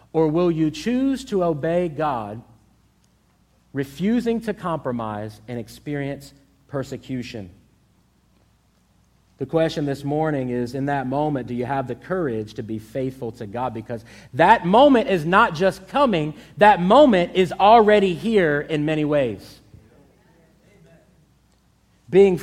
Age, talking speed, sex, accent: 40-59, 125 wpm, male, American